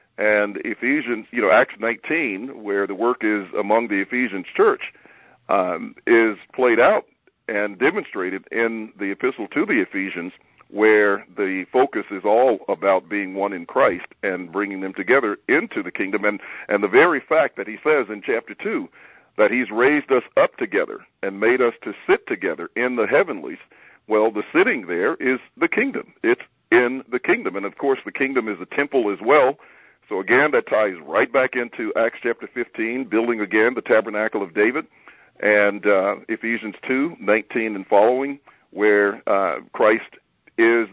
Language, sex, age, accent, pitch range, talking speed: English, male, 50-69, American, 105-130 Hz, 170 wpm